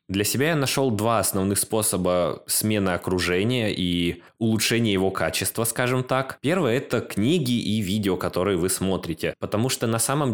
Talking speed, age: 165 wpm, 20-39